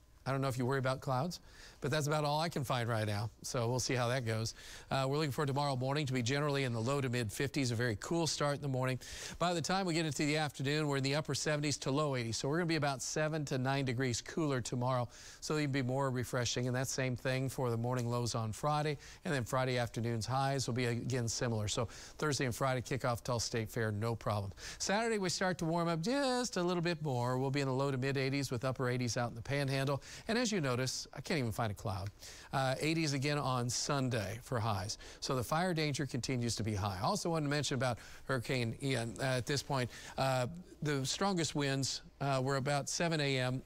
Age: 40-59